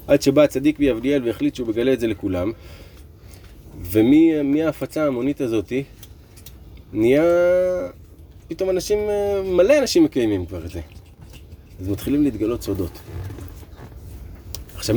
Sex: male